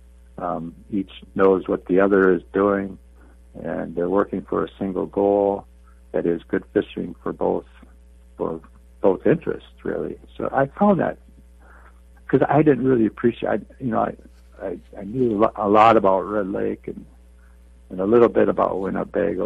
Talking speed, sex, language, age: 160 wpm, male, English, 60-79